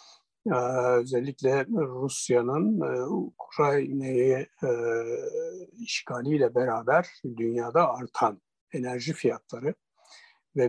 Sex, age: male, 60-79